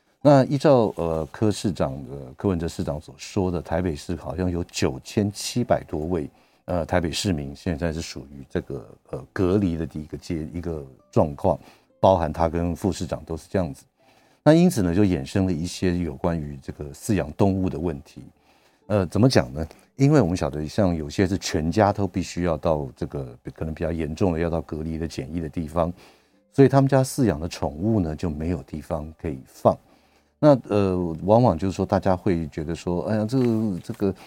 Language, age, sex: Chinese, 50-69, male